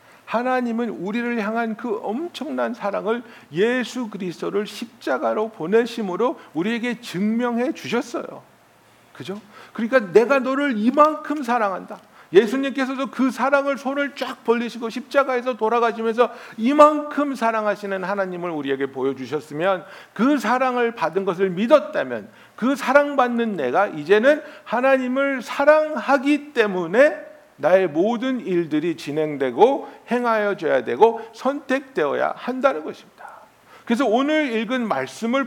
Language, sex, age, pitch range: Korean, male, 60-79, 215-270 Hz